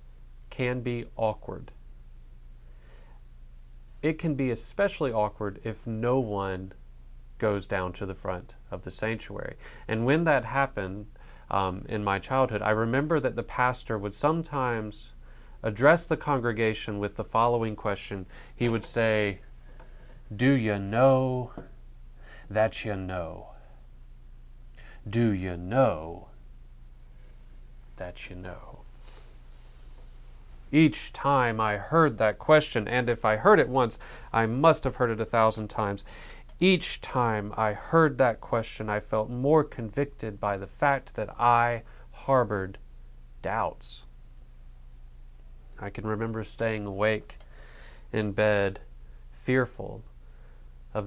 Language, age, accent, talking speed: English, 30-49, American, 120 wpm